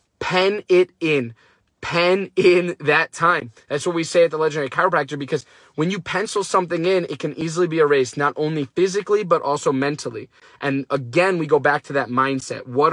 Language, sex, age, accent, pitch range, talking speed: English, male, 20-39, American, 135-175 Hz, 190 wpm